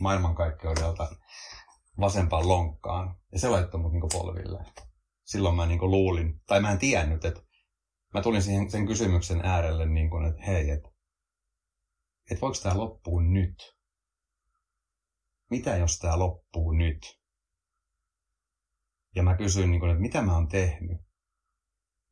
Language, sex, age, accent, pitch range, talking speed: Finnish, male, 30-49, native, 80-95 Hz, 115 wpm